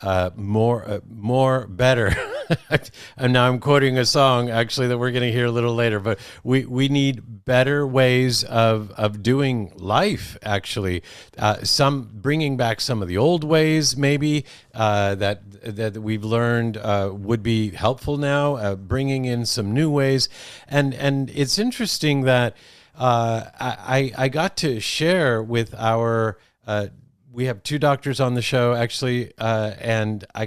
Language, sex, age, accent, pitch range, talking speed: English, male, 50-69, American, 110-135 Hz, 160 wpm